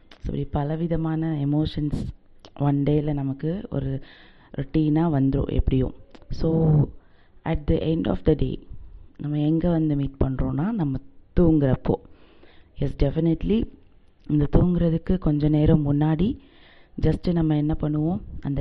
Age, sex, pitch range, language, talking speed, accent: 30-49, female, 140-165 Hz, Tamil, 120 wpm, native